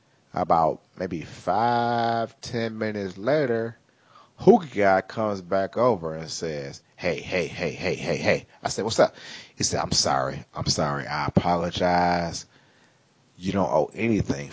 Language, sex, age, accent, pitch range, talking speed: English, male, 30-49, American, 85-125 Hz, 145 wpm